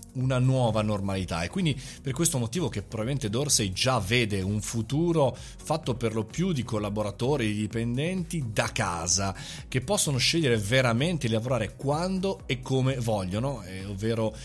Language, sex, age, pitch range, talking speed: Italian, male, 30-49, 110-145 Hz, 150 wpm